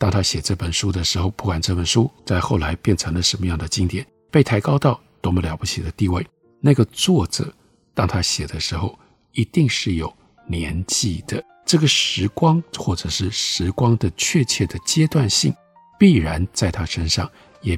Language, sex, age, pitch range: Chinese, male, 50-69, 90-125 Hz